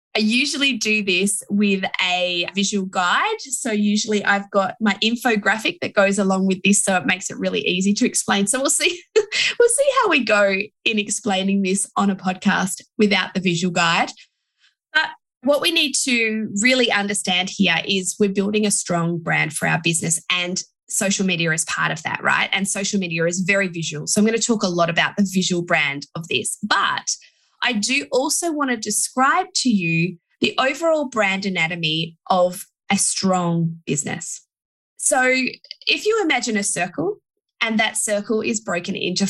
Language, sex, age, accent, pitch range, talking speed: English, female, 20-39, Australian, 180-245 Hz, 180 wpm